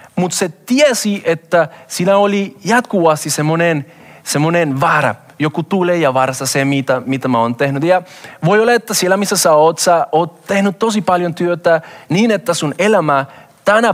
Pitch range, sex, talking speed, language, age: 150-195 Hz, male, 165 wpm, Finnish, 30-49